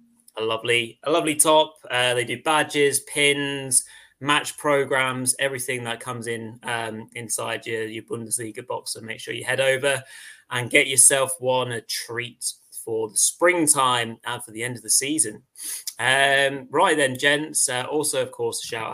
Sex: male